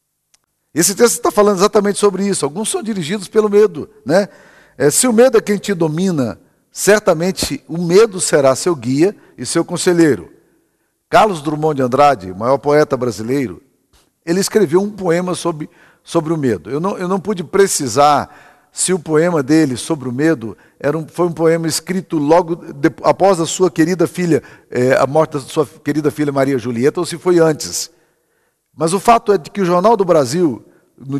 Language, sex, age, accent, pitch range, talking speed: Portuguese, male, 50-69, Brazilian, 145-185 Hz, 170 wpm